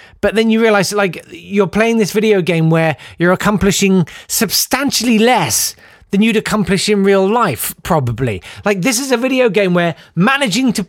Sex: male